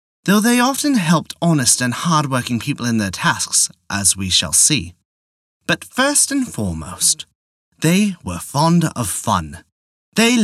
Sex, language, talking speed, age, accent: male, English, 145 wpm, 30-49, British